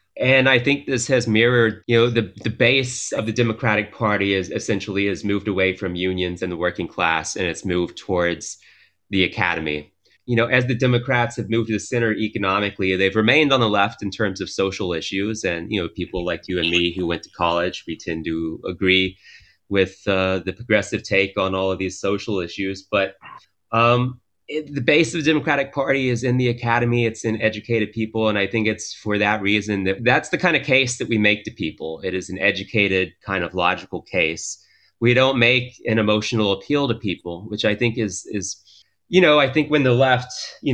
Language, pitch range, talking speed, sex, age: English, 95-120 Hz, 210 wpm, male, 30-49